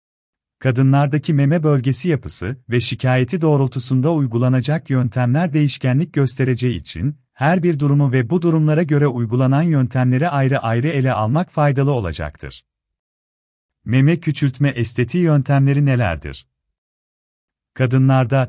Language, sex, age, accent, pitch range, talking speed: Turkish, male, 40-59, native, 105-150 Hz, 105 wpm